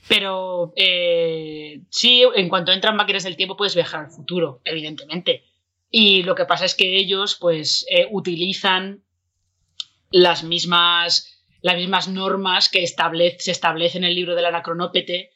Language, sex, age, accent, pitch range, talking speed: Spanish, female, 20-39, Spanish, 170-195 Hz, 150 wpm